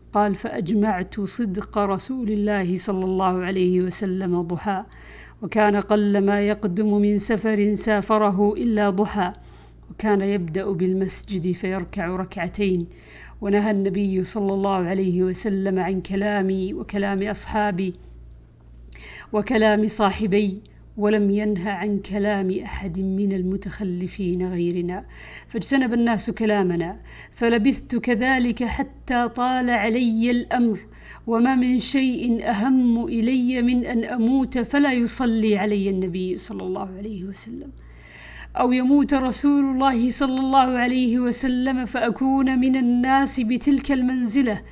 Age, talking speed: 50-69, 110 wpm